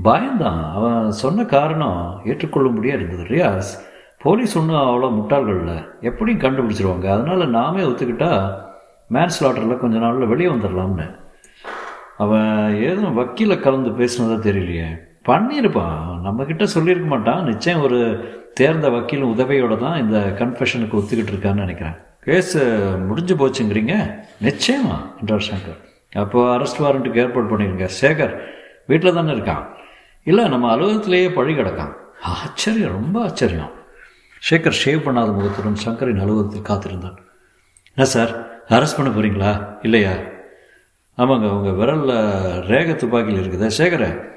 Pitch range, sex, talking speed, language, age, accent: 100-140 Hz, male, 120 wpm, Tamil, 60-79, native